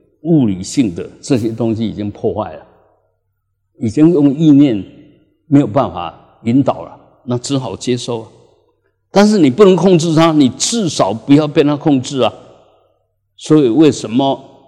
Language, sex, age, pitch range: Chinese, male, 60-79, 105-160 Hz